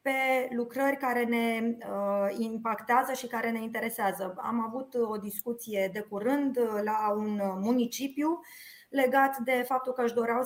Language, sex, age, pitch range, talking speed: Romanian, female, 20-39, 210-255 Hz, 145 wpm